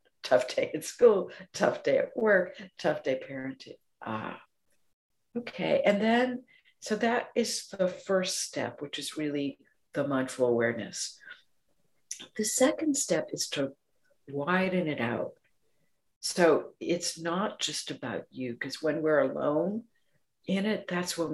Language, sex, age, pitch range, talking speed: English, female, 60-79, 145-210 Hz, 140 wpm